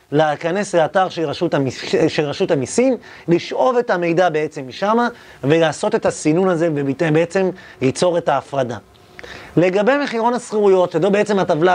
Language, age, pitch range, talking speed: Hebrew, 30-49, 150-200 Hz, 125 wpm